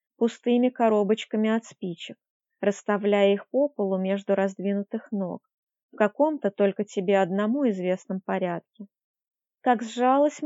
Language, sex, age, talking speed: Russian, female, 20-39, 115 wpm